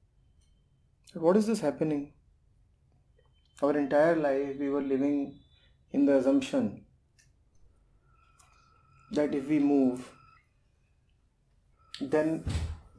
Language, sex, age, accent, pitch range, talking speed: English, male, 30-49, Indian, 115-180 Hz, 85 wpm